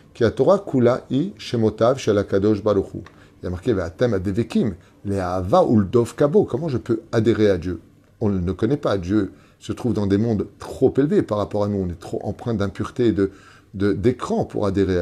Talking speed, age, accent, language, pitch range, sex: 150 wpm, 30-49, French, French, 95-120 Hz, male